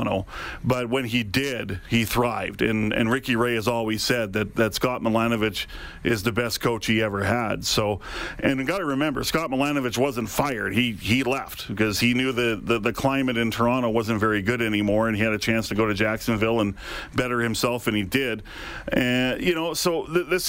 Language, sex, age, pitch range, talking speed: English, male, 40-59, 115-130 Hz, 205 wpm